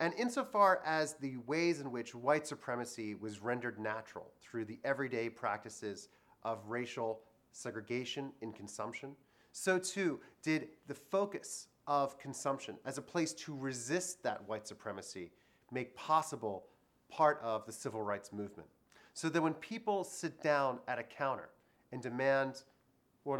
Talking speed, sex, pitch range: 145 wpm, male, 115-150 Hz